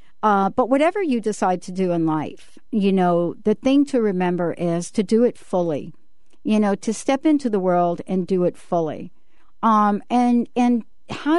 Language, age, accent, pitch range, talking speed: English, 60-79, American, 175-225 Hz, 185 wpm